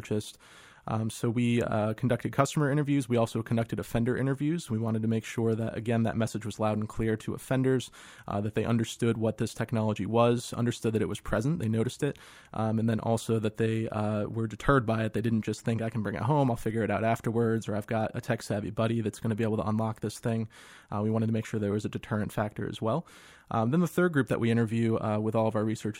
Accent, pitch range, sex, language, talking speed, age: American, 110-120 Hz, male, English, 255 wpm, 20-39